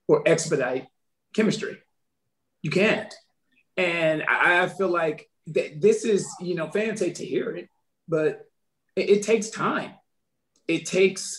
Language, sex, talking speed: English, male, 135 wpm